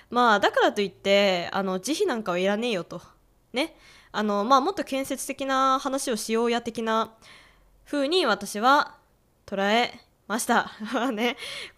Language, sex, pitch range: Japanese, female, 200-285 Hz